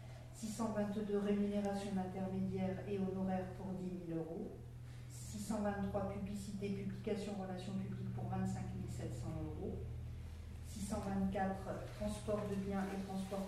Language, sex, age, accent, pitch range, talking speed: French, female, 40-59, French, 180-205 Hz, 105 wpm